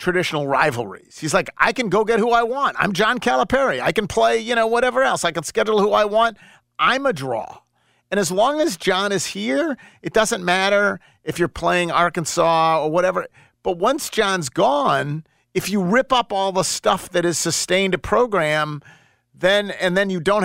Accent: American